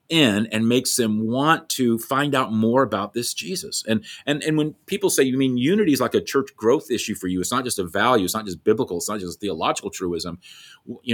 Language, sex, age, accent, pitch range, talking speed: English, male, 40-59, American, 120-165 Hz, 240 wpm